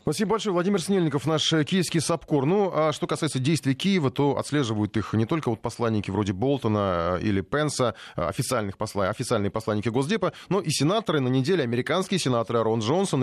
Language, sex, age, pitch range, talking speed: Russian, male, 30-49, 115-160 Hz, 165 wpm